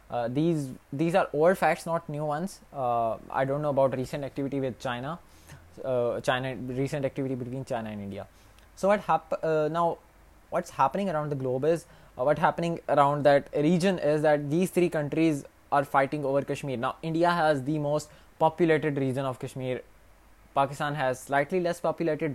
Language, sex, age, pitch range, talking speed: Urdu, male, 20-39, 125-155 Hz, 175 wpm